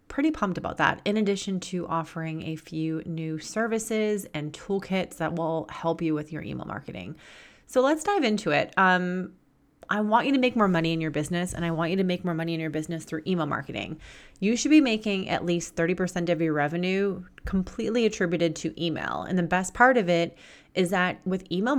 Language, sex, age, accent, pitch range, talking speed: English, female, 30-49, American, 165-195 Hz, 210 wpm